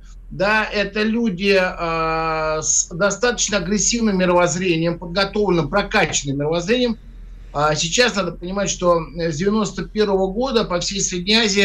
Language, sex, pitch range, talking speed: Russian, male, 170-215 Hz, 120 wpm